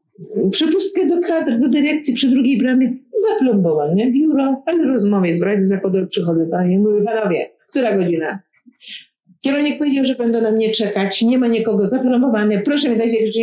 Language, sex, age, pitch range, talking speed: Polish, female, 50-69, 195-280 Hz, 155 wpm